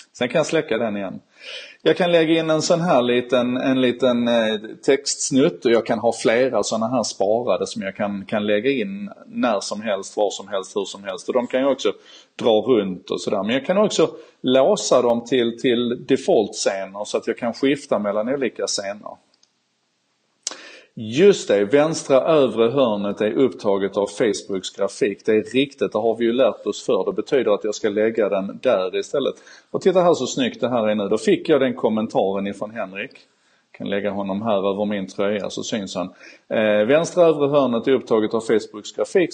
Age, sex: 30-49, male